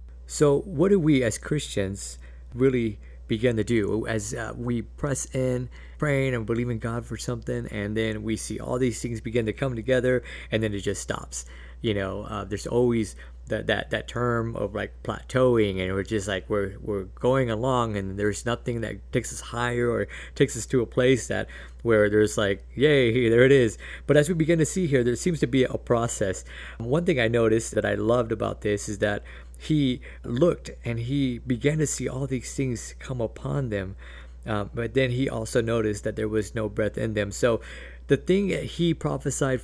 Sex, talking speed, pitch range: male, 200 wpm, 105-135 Hz